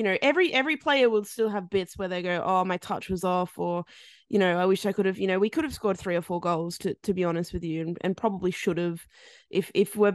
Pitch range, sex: 175-205 Hz, female